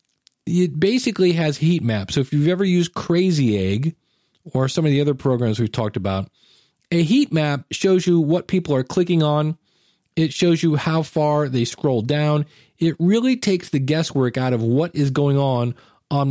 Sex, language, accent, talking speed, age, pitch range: male, English, American, 190 wpm, 40-59, 130-170 Hz